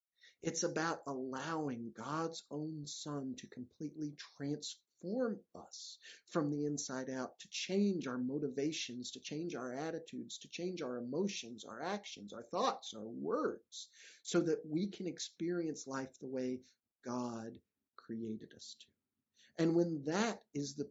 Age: 50-69